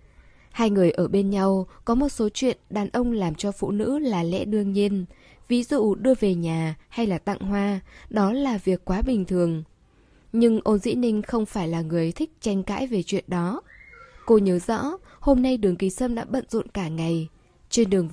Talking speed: 210 wpm